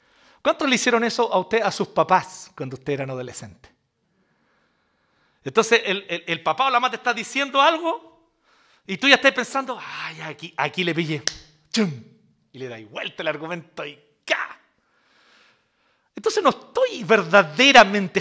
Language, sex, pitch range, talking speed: Spanish, male, 195-310 Hz, 165 wpm